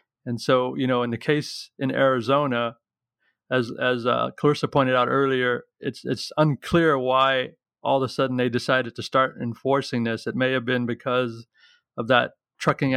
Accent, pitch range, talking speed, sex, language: American, 120-135 Hz, 175 wpm, male, English